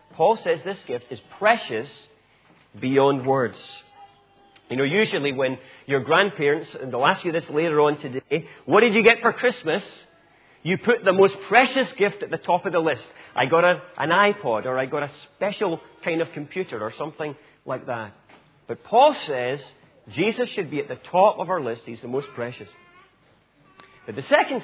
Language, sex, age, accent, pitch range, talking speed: English, male, 40-59, British, 140-215 Hz, 185 wpm